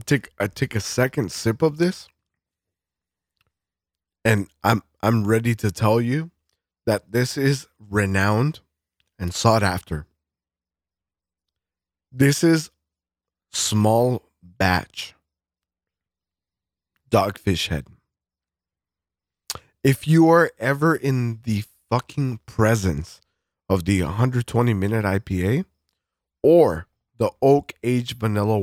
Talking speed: 95 wpm